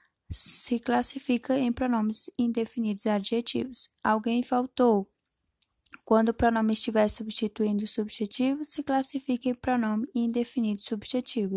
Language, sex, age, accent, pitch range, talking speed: Portuguese, female, 10-29, Brazilian, 220-250 Hz, 115 wpm